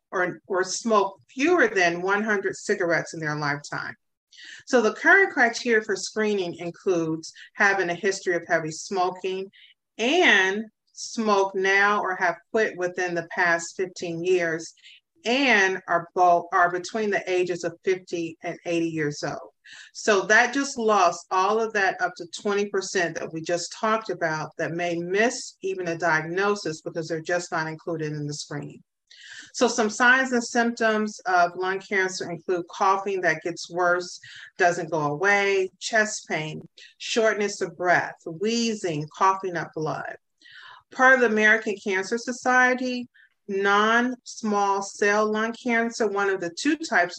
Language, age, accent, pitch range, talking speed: English, 40-59, American, 170-215 Hz, 150 wpm